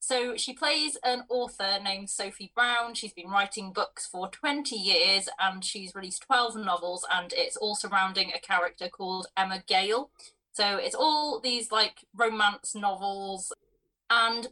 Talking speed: 155 wpm